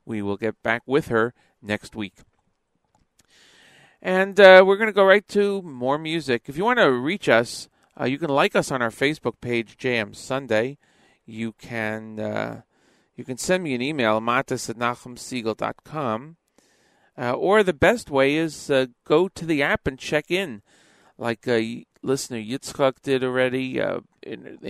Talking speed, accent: 165 wpm, American